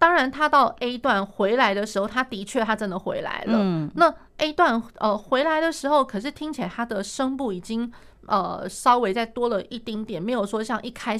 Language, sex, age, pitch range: Chinese, female, 30-49, 195-245 Hz